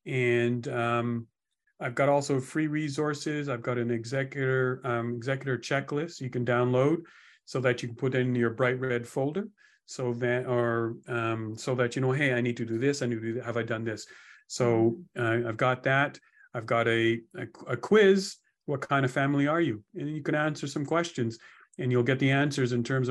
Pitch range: 120-145 Hz